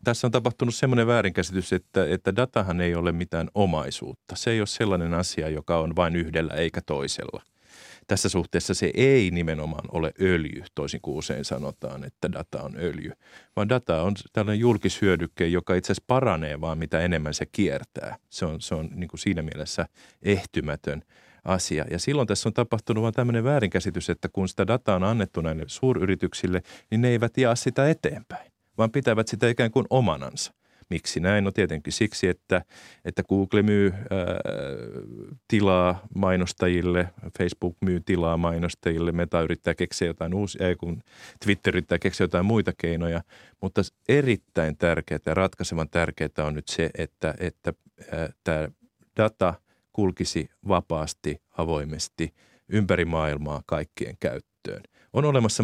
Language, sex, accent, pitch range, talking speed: Finnish, male, native, 85-105 Hz, 150 wpm